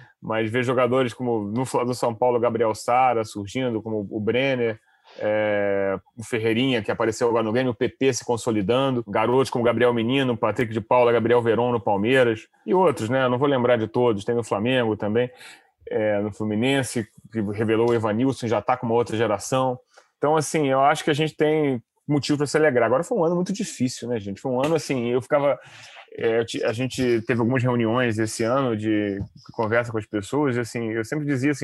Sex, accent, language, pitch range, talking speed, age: male, Brazilian, Portuguese, 115-145 Hz, 205 wpm, 30-49